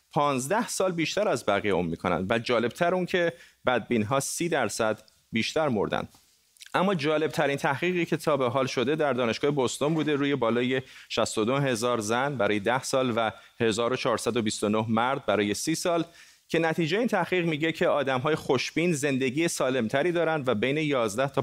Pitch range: 115-155 Hz